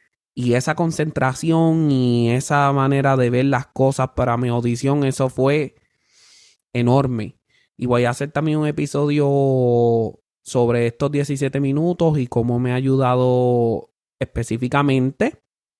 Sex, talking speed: male, 125 wpm